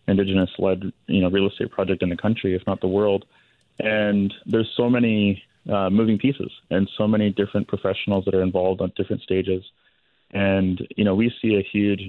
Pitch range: 90-100 Hz